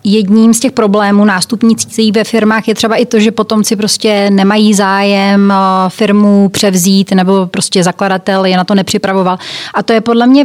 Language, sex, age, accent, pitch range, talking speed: Czech, female, 30-49, native, 195-220 Hz, 170 wpm